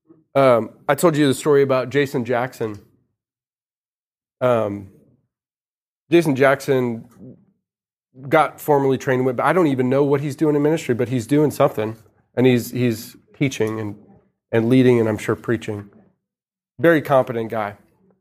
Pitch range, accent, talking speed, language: 115-150 Hz, American, 140 wpm, English